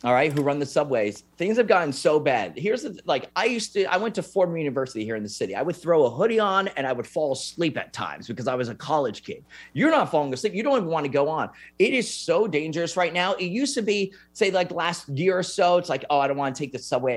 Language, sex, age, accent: English, male, 30-49, American